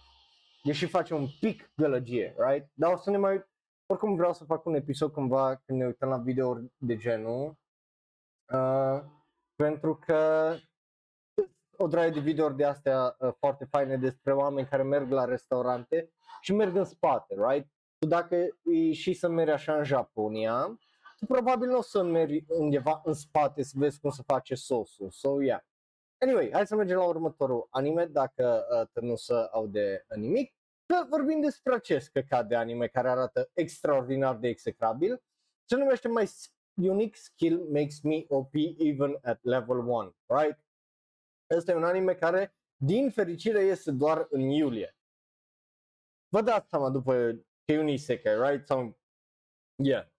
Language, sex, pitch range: Romanian, male, 130-180 Hz